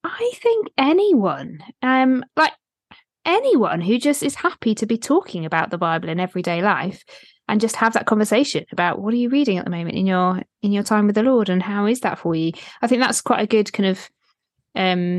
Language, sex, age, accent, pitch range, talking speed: English, female, 20-39, British, 175-225 Hz, 215 wpm